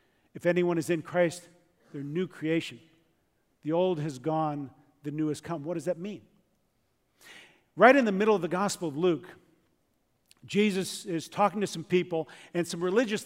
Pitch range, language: 165-205 Hz, English